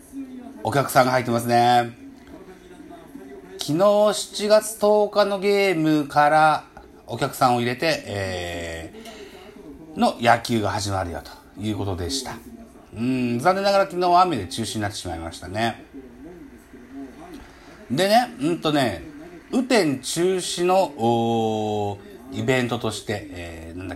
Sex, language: male, Japanese